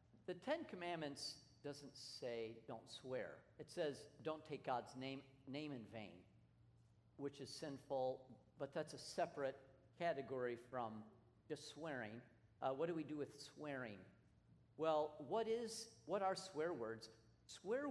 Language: English